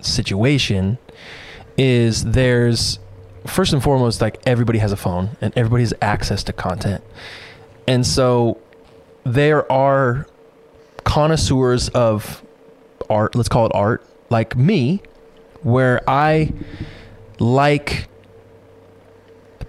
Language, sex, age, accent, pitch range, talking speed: English, male, 20-39, American, 110-135 Hz, 105 wpm